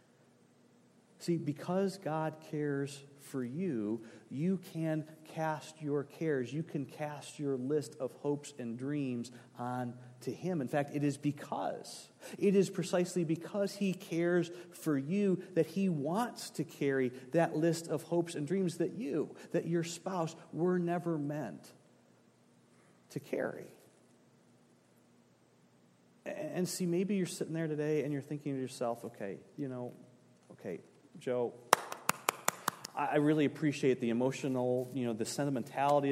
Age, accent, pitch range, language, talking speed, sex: 40-59, American, 125-165 Hz, English, 140 wpm, male